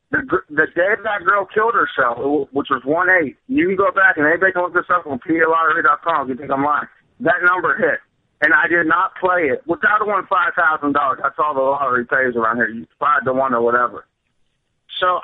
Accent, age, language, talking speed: American, 50-69, English, 215 wpm